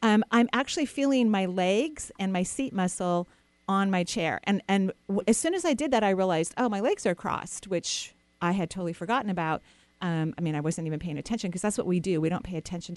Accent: American